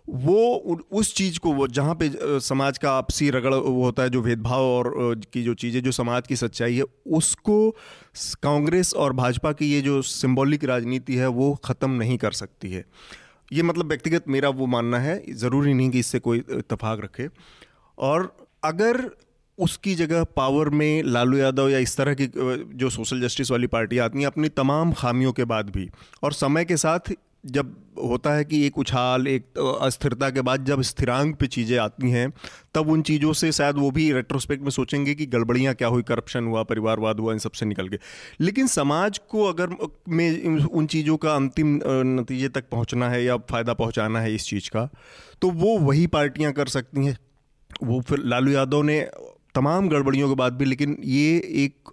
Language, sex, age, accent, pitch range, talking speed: Hindi, male, 30-49, native, 125-145 Hz, 185 wpm